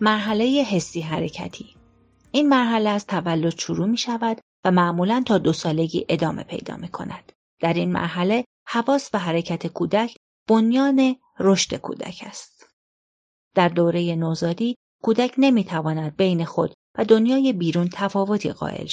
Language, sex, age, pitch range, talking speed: Persian, female, 40-59, 170-225 Hz, 135 wpm